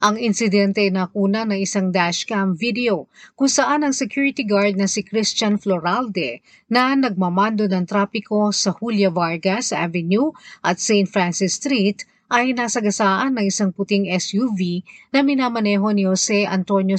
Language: Filipino